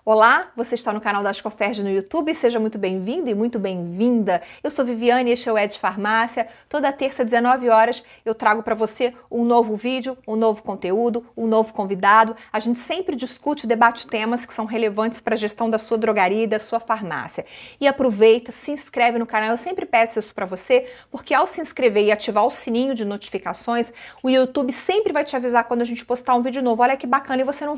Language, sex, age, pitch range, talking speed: Portuguese, female, 30-49, 220-265 Hz, 220 wpm